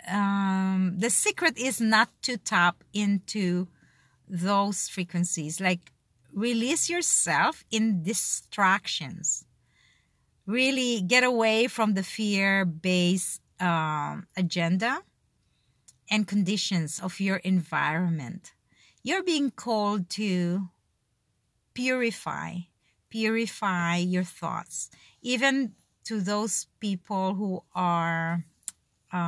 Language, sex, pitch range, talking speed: English, female, 175-220 Hz, 85 wpm